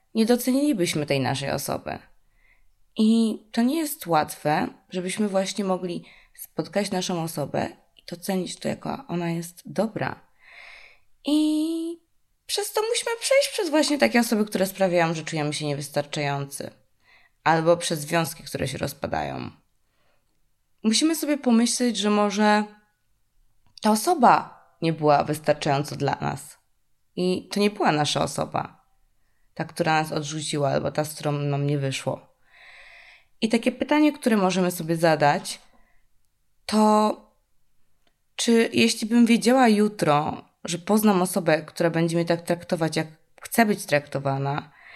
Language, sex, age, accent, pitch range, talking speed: Polish, female, 20-39, native, 155-245 Hz, 130 wpm